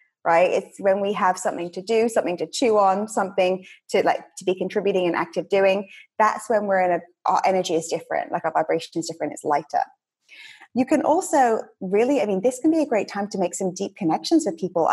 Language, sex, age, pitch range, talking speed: English, female, 20-39, 180-230 Hz, 225 wpm